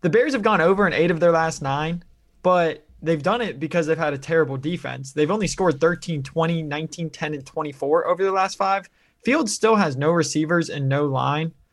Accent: American